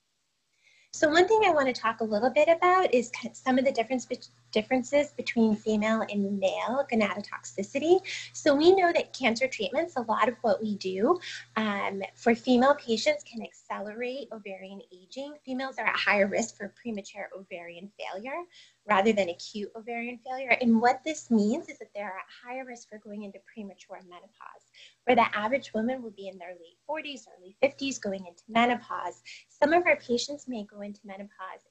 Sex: female